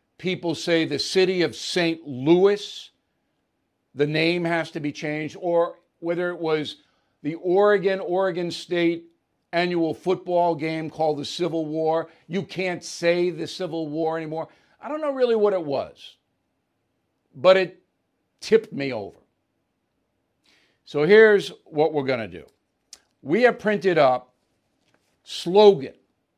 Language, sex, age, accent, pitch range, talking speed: English, male, 60-79, American, 160-195 Hz, 135 wpm